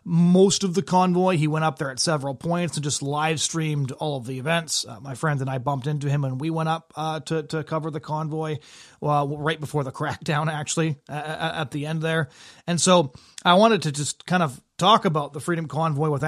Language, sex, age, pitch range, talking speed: English, male, 30-49, 150-180 Hz, 230 wpm